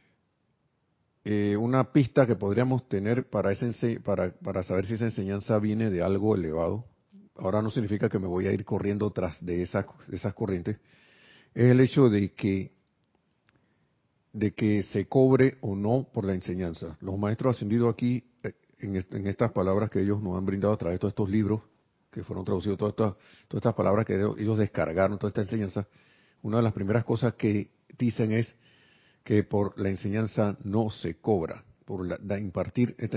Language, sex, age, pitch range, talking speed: Spanish, male, 50-69, 100-120 Hz, 170 wpm